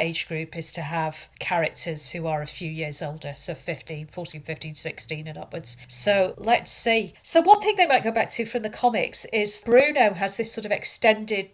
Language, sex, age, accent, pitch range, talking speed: English, female, 40-59, British, 175-220 Hz, 210 wpm